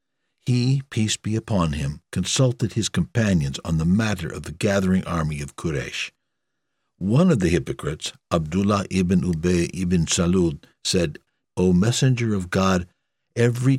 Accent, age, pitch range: American, 60-79, 85-110 Hz